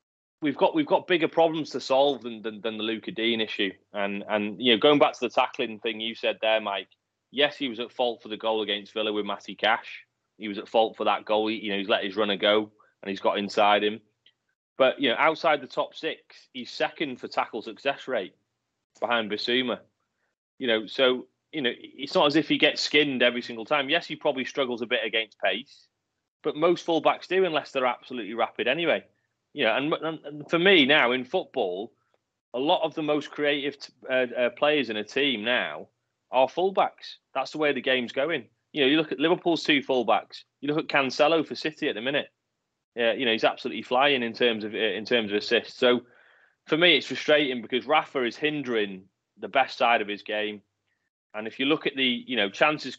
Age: 30-49